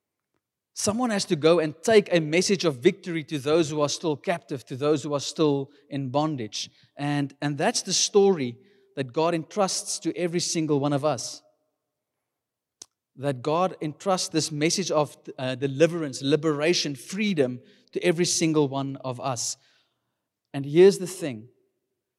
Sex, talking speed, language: male, 155 wpm, English